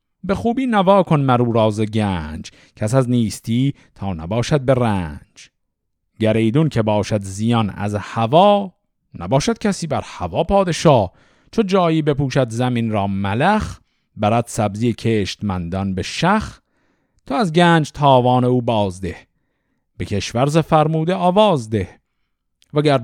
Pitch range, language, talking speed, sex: 105-160 Hz, Persian, 130 wpm, male